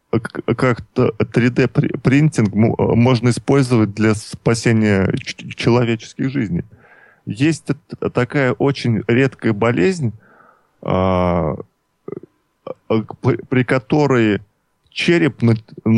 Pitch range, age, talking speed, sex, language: 110-130 Hz, 20-39, 65 wpm, male, Russian